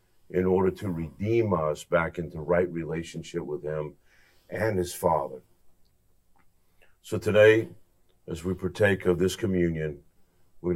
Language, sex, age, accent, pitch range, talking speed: English, male, 50-69, American, 85-95 Hz, 130 wpm